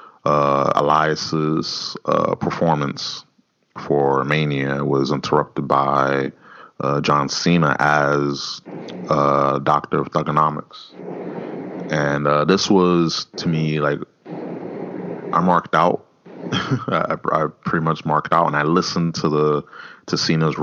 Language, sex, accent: English, male, American